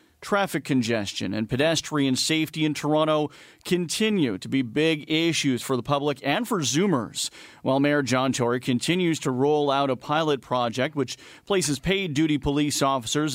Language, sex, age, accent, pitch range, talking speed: English, male, 40-59, American, 130-155 Hz, 155 wpm